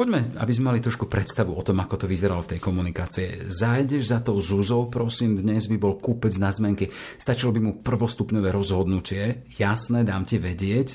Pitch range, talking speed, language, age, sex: 95-115 Hz, 185 wpm, Slovak, 40-59, male